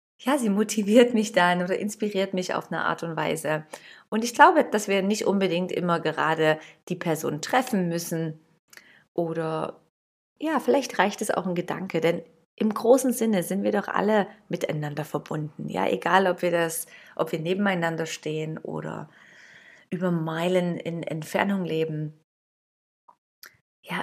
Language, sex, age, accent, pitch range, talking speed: German, female, 30-49, German, 160-195 Hz, 150 wpm